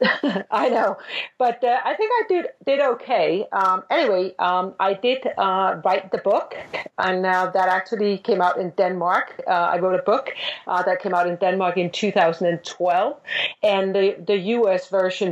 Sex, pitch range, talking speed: female, 170-205 Hz, 180 wpm